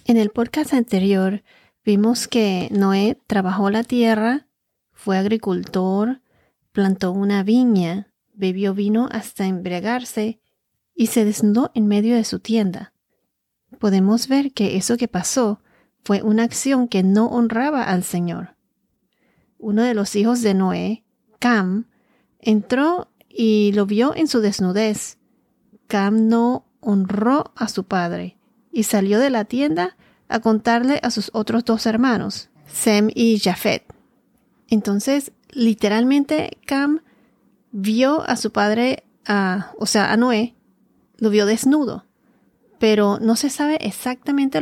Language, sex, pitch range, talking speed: Spanish, female, 200-245 Hz, 130 wpm